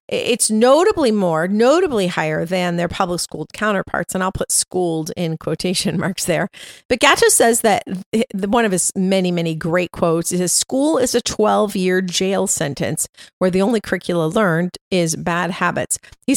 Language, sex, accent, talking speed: English, female, American, 165 wpm